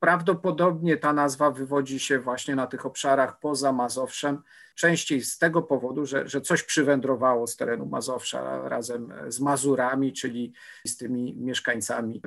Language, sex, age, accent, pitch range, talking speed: Polish, male, 50-69, native, 130-145 Hz, 140 wpm